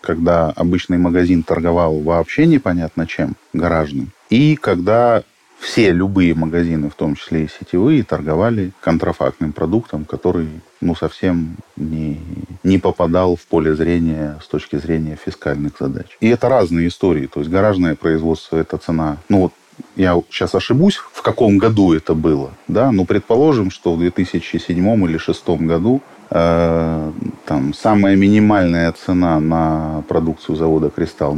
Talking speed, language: 140 wpm, Russian